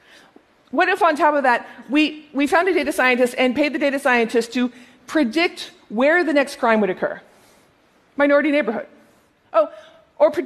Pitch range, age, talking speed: 225-300 Hz, 40-59, 170 wpm